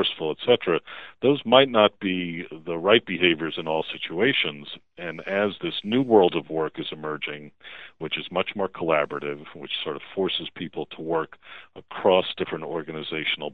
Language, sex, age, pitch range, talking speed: English, male, 50-69, 75-90 Hz, 155 wpm